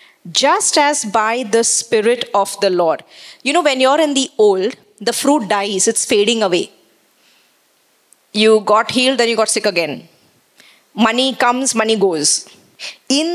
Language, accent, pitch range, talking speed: English, Indian, 210-270 Hz, 155 wpm